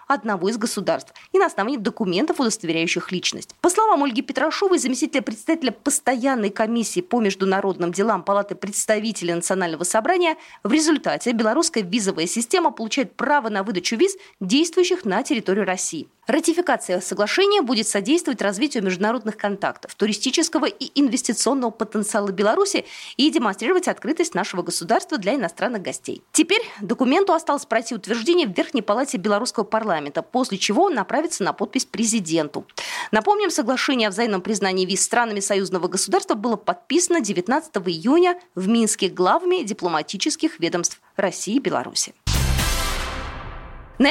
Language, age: Russian, 20-39